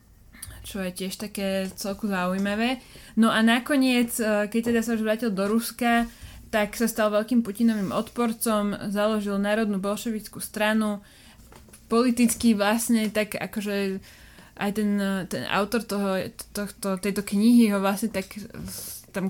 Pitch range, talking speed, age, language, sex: 195-220 Hz, 135 wpm, 20-39, Slovak, female